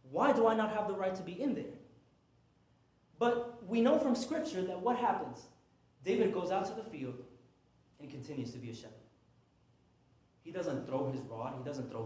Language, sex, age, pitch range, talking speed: English, male, 20-39, 125-180 Hz, 195 wpm